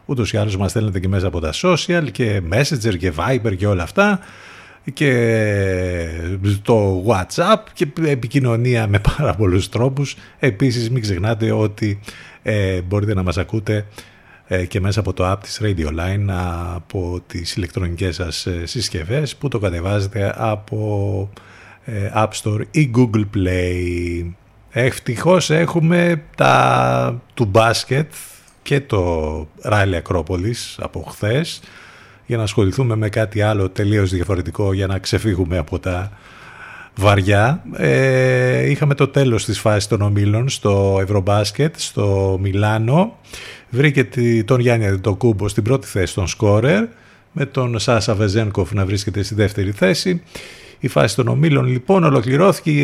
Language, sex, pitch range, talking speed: Greek, male, 95-130 Hz, 135 wpm